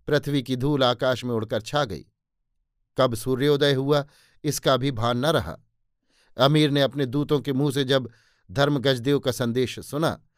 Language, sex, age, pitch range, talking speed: Hindi, male, 50-69, 125-145 Hz, 160 wpm